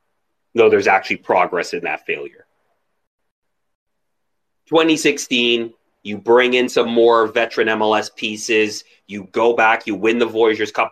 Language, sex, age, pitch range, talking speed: English, male, 30-49, 110-130 Hz, 130 wpm